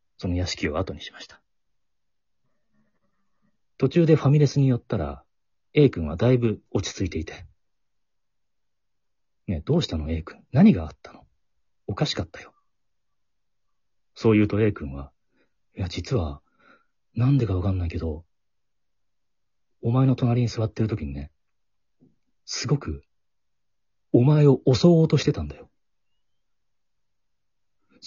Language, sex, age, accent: Japanese, male, 40-59, native